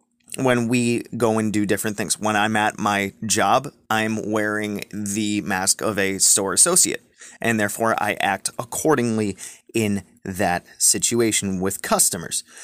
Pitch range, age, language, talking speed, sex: 110-155 Hz, 30-49, English, 140 wpm, male